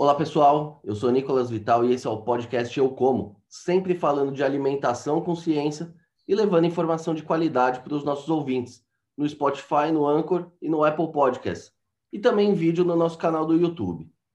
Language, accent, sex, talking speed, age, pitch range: Portuguese, Brazilian, male, 190 wpm, 20-39, 140-205 Hz